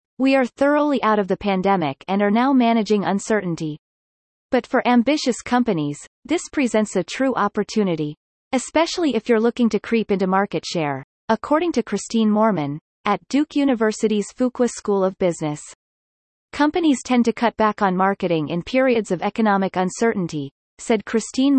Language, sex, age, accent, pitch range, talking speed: English, female, 30-49, American, 185-245 Hz, 155 wpm